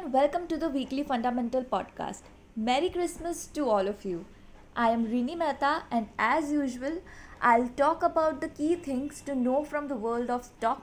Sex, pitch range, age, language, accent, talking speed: female, 225-300 Hz, 20-39, English, Indian, 175 wpm